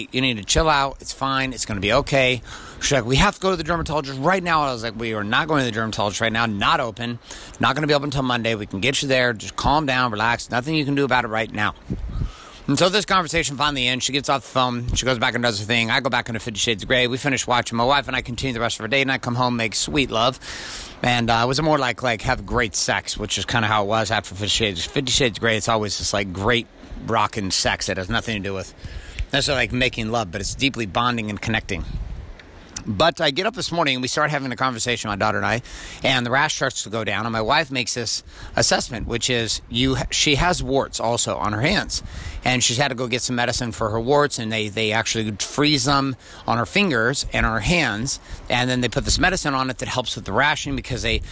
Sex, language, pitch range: male, English, 110-135 Hz